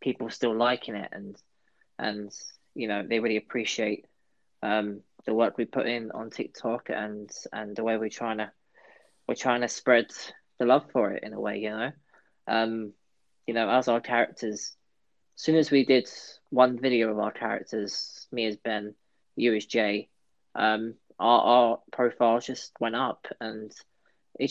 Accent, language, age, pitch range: British, English, 20-39, 105-125 Hz